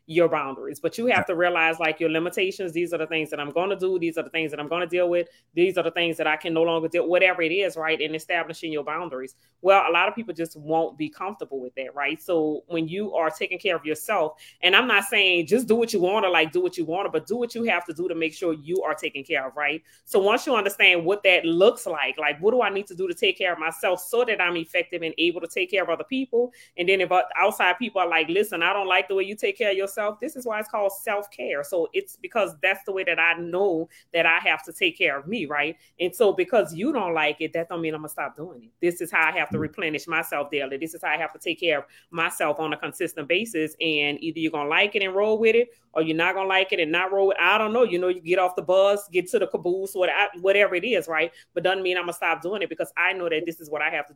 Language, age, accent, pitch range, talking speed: English, 30-49, American, 160-200 Hz, 295 wpm